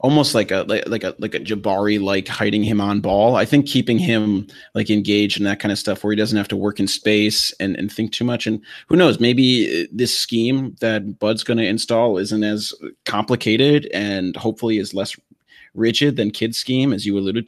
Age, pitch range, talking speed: 30-49, 105-125 Hz, 215 wpm